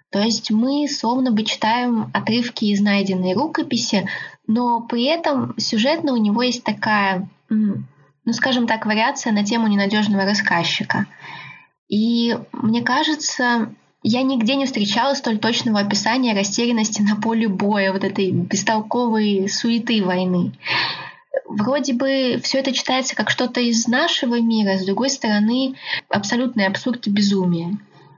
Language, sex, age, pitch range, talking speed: Russian, female, 20-39, 205-250 Hz, 130 wpm